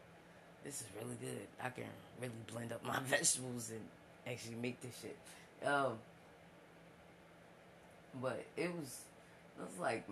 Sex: female